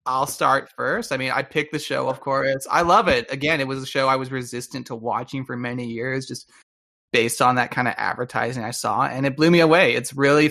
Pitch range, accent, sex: 125-150 Hz, American, male